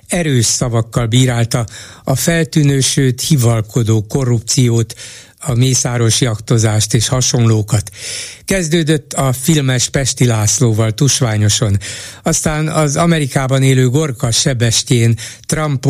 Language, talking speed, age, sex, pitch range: Hungarian, 95 wpm, 60-79, male, 115-140 Hz